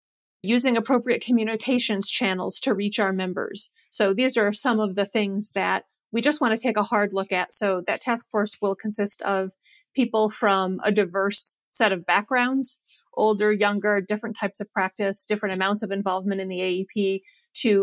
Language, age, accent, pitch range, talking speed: English, 30-49, American, 195-230 Hz, 180 wpm